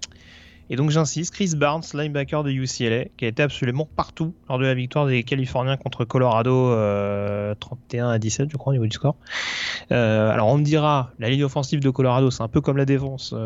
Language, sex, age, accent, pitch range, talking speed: French, male, 30-49, French, 125-150 Hz, 210 wpm